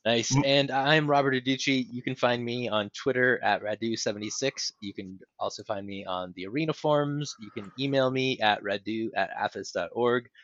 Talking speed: 170 wpm